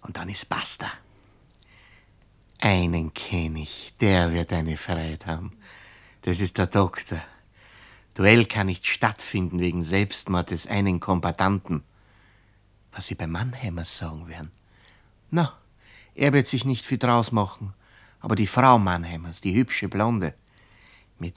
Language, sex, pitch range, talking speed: German, male, 90-110 Hz, 130 wpm